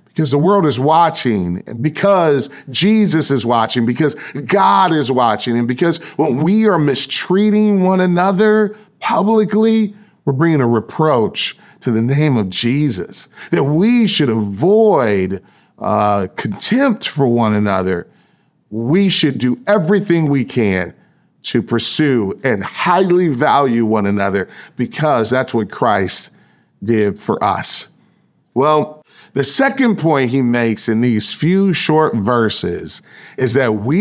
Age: 40-59